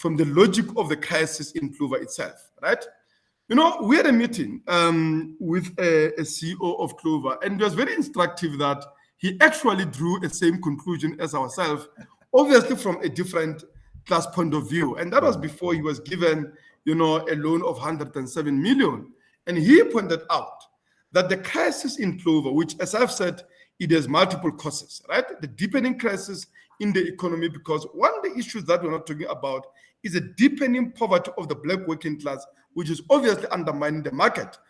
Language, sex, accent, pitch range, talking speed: English, male, South African, 160-215 Hz, 185 wpm